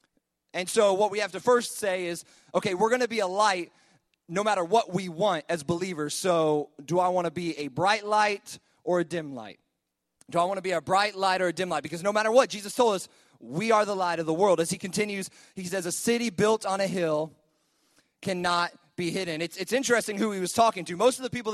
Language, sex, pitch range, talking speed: English, male, 175-215 Hz, 245 wpm